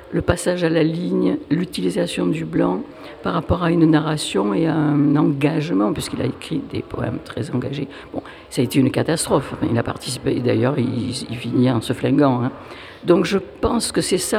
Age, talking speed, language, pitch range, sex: 60-79, 210 wpm, French, 145-180 Hz, female